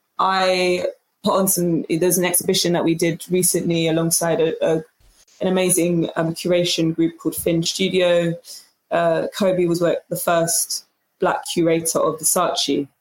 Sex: female